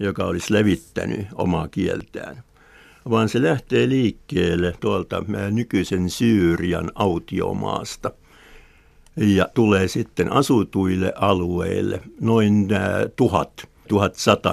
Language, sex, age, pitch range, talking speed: Finnish, male, 60-79, 90-115 Hz, 85 wpm